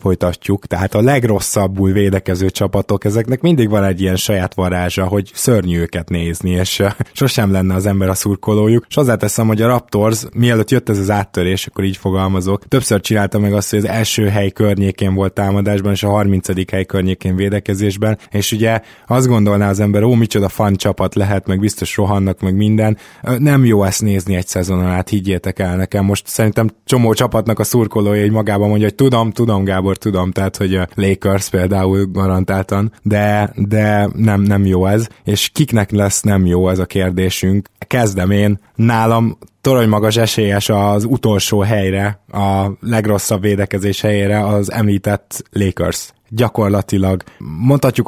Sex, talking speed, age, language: male, 165 wpm, 20-39, Hungarian